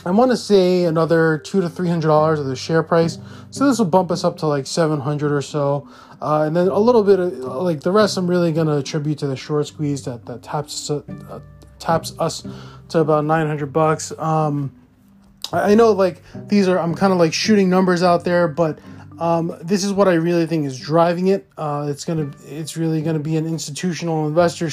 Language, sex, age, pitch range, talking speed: English, male, 20-39, 150-175 Hz, 225 wpm